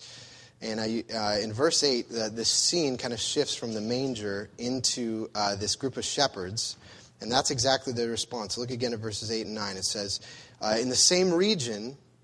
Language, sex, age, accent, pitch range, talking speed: English, male, 20-39, American, 110-140 Hz, 170 wpm